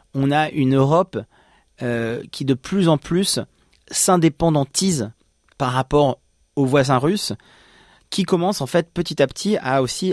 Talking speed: 150 wpm